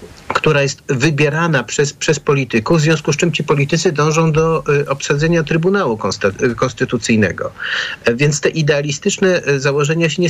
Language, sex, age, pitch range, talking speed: Polish, male, 50-69, 125-170 Hz, 135 wpm